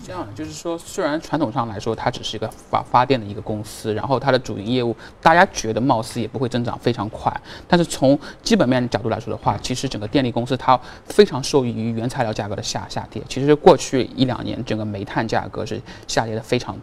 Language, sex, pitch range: Chinese, male, 110-145 Hz